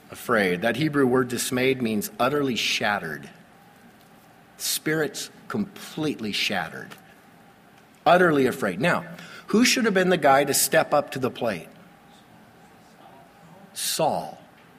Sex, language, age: male, English, 50-69